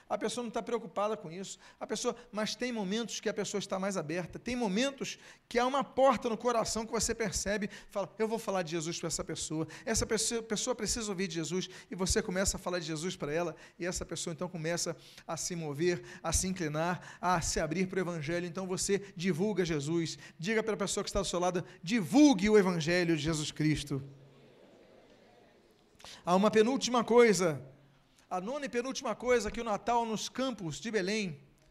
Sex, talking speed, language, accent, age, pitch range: male, 195 wpm, Portuguese, Brazilian, 40-59, 165-220 Hz